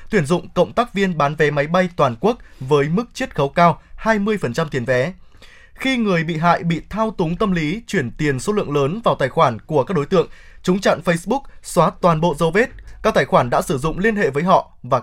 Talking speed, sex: 235 wpm, male